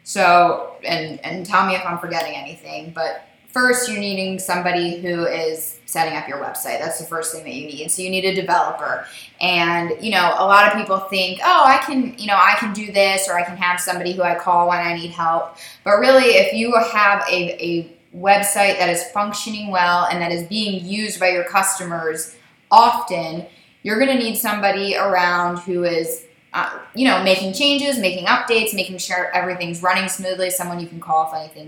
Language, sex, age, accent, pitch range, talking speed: English, female, 10-29, American, 170-200 Hz, 205 wpm